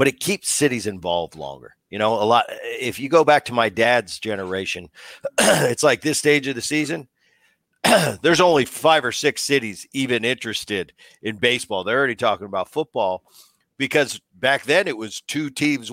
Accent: American